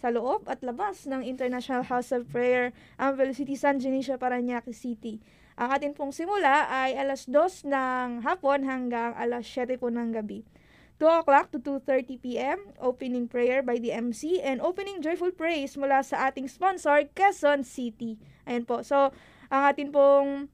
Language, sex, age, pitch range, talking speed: Filipino, female, 20-39, 250-295 Hz, 165 wpm